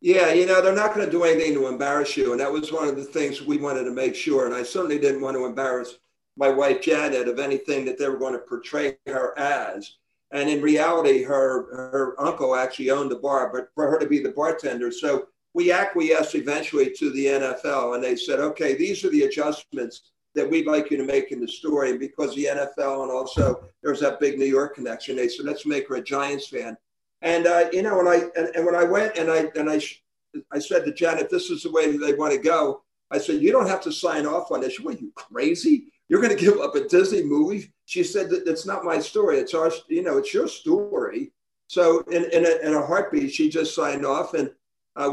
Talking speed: 245 wpm